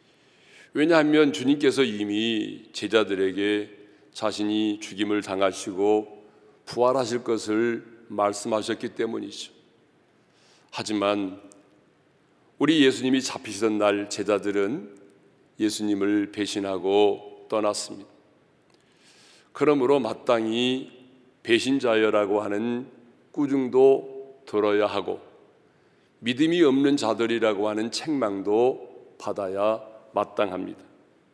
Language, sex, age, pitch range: Korean, male, 40-59, 105-140 Hz